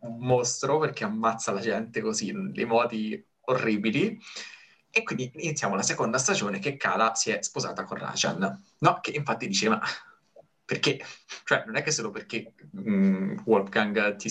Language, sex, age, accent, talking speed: Italian, male, 20-39, native, 160 wpm